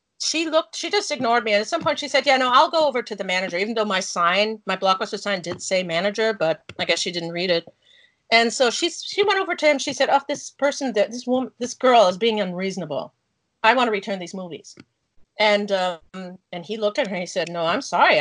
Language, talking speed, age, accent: English, 250 wpm, 40-59, American